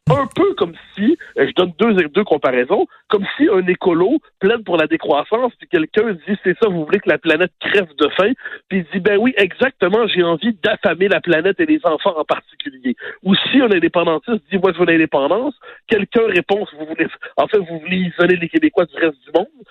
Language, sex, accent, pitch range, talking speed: French, male, French, 175-245 Hz, 230 wpm